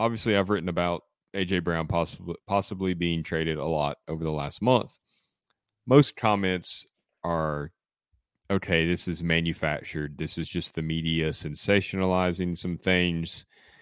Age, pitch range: 30-49, 80-110 Hz